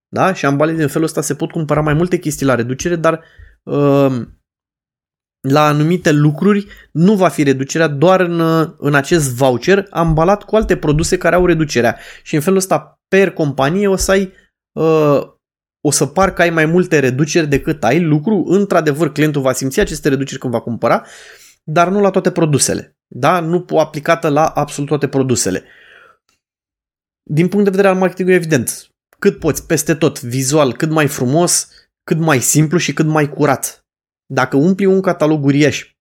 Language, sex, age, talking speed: Romanian, male, 20-39, 170 wpm